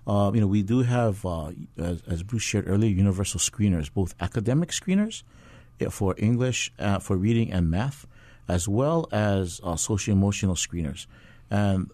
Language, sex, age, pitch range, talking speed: English, male, 50-69, 95-120 Hz, 155 wpm